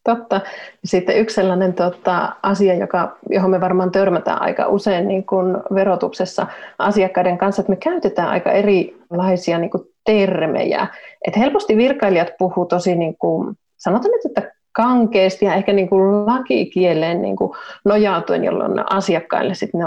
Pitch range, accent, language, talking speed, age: 180-200 Hz, native, Finnish, 140 wpm, 30-49